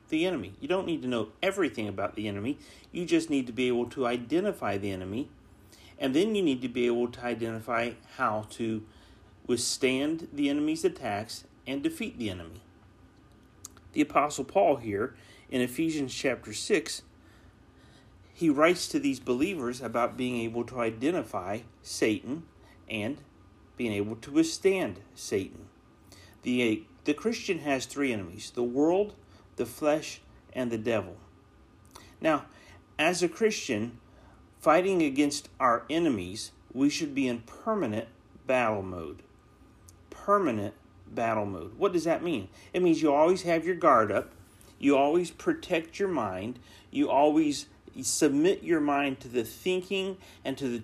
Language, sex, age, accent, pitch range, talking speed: English, male, 40-59, American, 115-185 Hz, 145 wpm